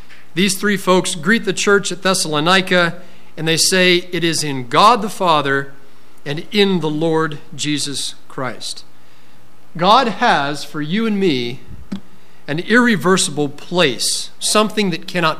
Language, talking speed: English, 135 wpm